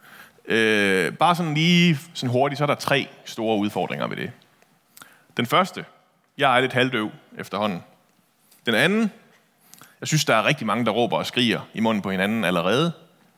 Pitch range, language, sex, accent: 110-170 Hz, Danish, male, native